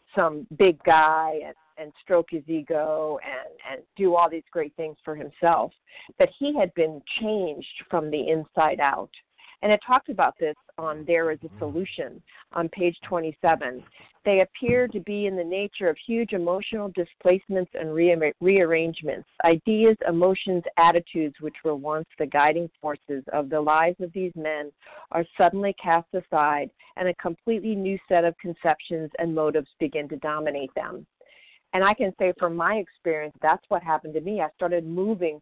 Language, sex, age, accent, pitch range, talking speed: English, female, 50-69, American, 155-185 Hz, 170 wpm